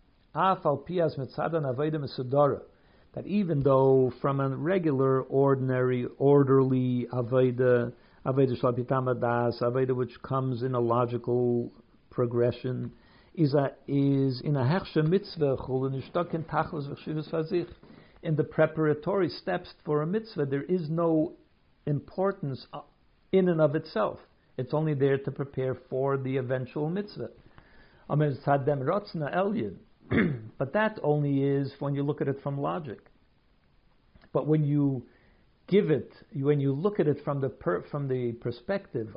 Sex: male